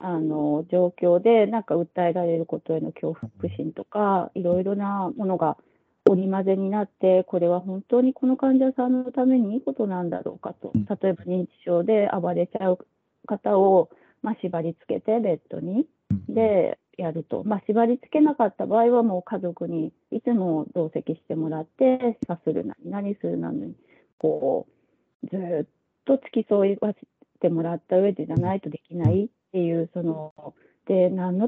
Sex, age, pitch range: female, 40-59, 175-230 Hz